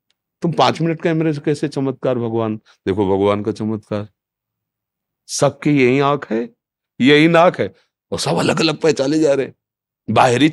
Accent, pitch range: native, 95-130 Hz